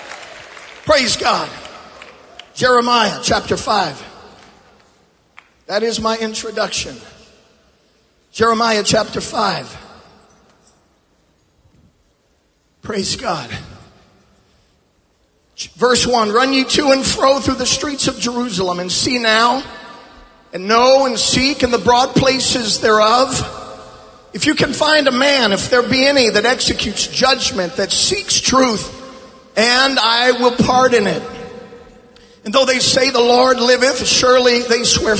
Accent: American